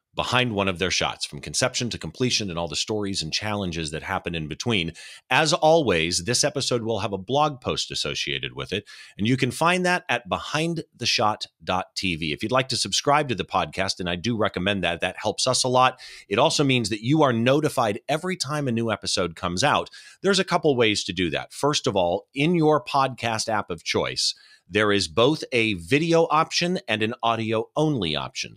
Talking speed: 205 wpm